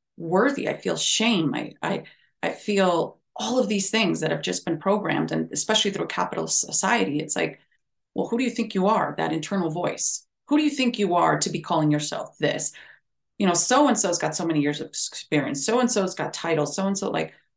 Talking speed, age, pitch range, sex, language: 205 wpm, 30-49, 155-215 Hz, female, English